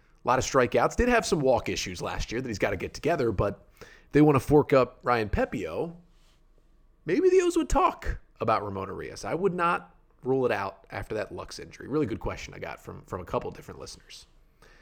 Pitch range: 120-155 Hz